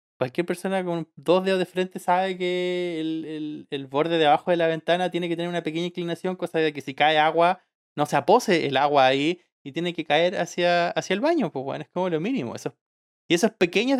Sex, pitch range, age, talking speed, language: male, 150-185 Hz, 20-39, 230 wpm, Spanish